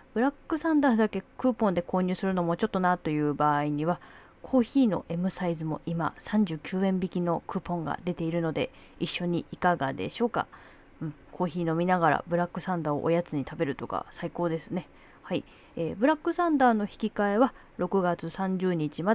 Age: 20-39